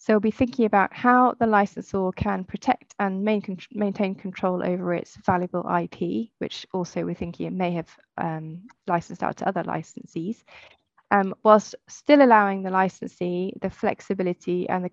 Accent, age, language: British, 20-39, English